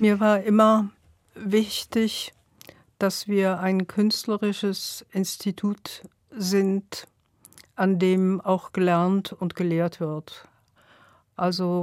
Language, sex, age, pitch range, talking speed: German, female, 50-69, 175-200 Hz, 90 wpm